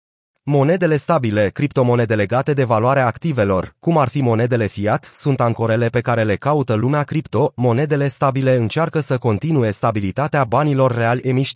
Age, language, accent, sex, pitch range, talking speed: 30-49, Romanian, native, male, 115-145 Hz, 150 wpm